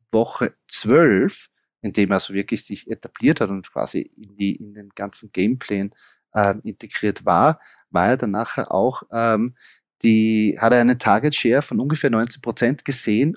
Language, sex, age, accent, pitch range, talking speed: German, male, 30-49, German, 100-115 Hz, 165 wpm